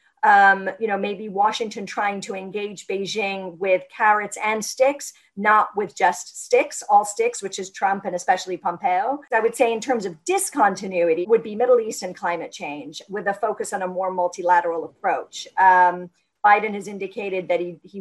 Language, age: English, 40-59